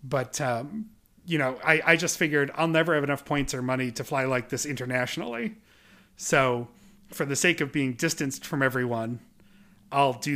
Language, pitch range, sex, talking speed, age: English, 125-150 Hz, male, 180 wpm, 30-49